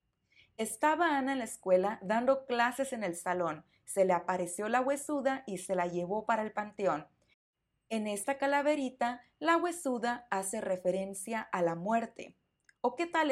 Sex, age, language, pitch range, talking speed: female, 30-49, Spanish, 205-270 Hz, 160 wpm